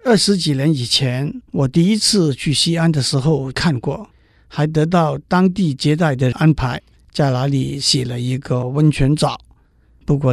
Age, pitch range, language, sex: 50-69, 130-165 Hz, Chinese, male